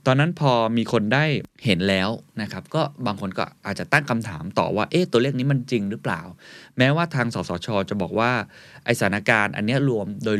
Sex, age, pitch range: male, 20-39, 95-130 Hz